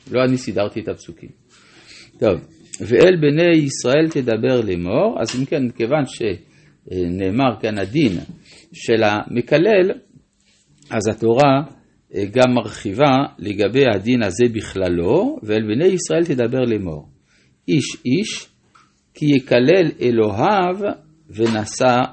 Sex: male